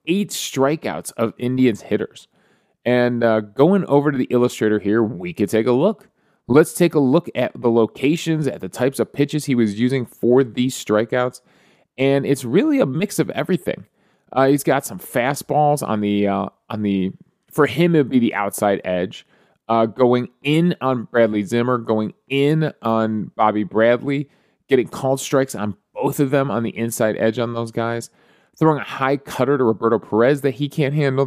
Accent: American